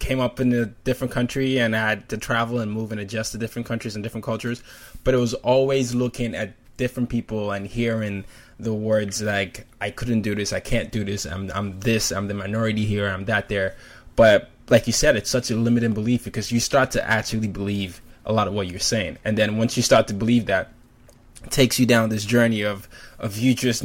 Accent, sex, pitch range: American, male, 105-120 Hz